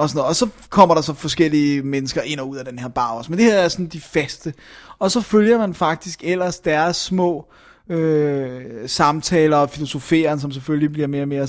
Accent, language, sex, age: native, Danish, male, 20-39